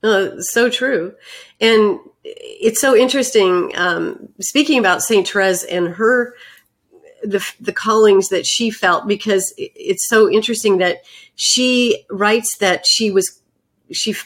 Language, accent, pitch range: English, American, 190-240 Hz